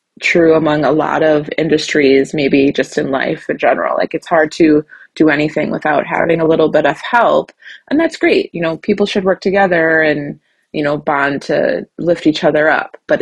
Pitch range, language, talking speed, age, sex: 150-170 Hz, English, 200 wpm, 20-39, female